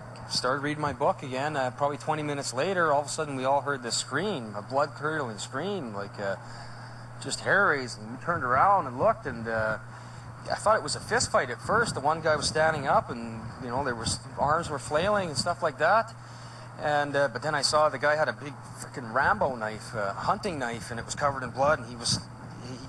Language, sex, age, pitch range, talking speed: English, male, 30-49, 120-150 Hz, 235 wpm